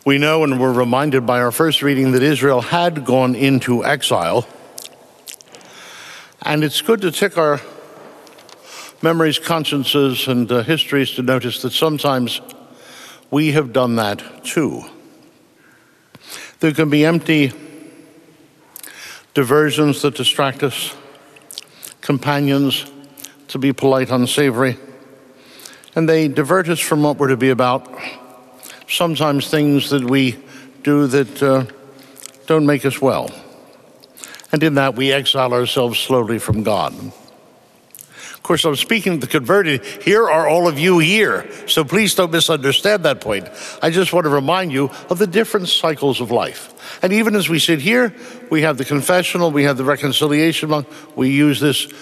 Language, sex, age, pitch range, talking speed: English, male, 60-79, 135-160 Hz, 145 wpm